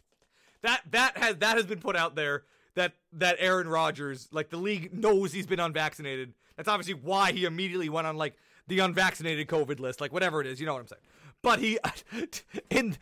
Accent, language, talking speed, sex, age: American, English, 205 wpm, male, 30-49